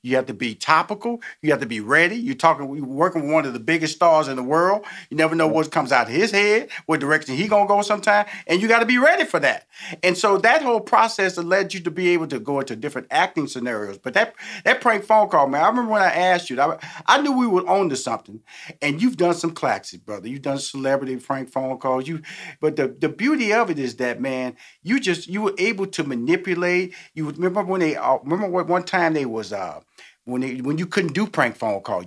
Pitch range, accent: 140-200 Hz, American